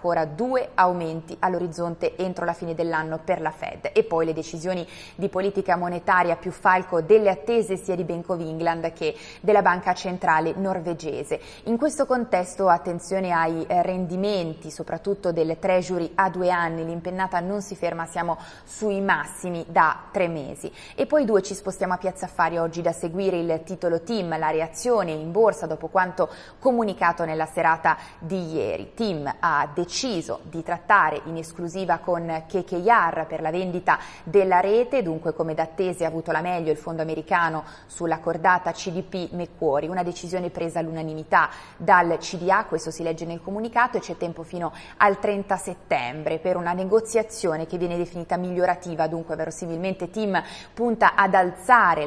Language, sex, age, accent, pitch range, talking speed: Italian, female, 20-39, native, 165-190 Hz, 160 wpm